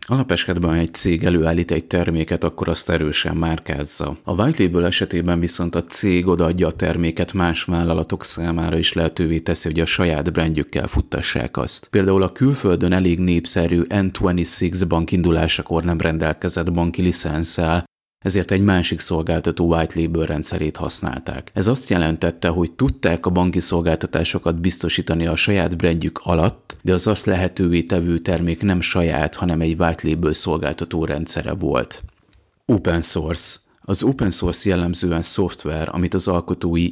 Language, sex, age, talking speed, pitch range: Hungarian, male, 30-49, 145 wpm, 80-95 Hz